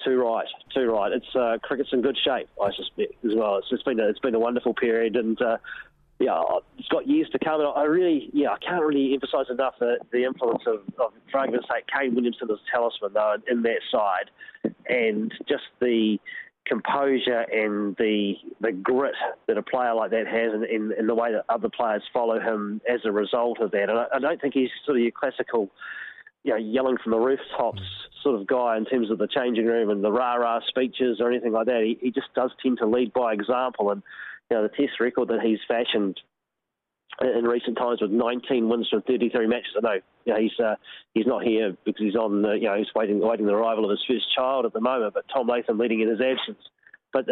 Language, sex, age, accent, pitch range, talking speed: English, male, 30-49, Australian, 110-130 Hz, 230 wpm